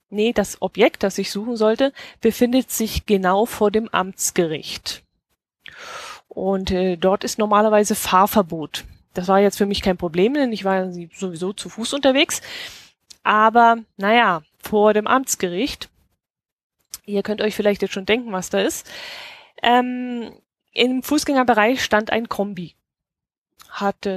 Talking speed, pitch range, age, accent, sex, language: 135 wpm, 190-230 Hz, 10-29, German, female, German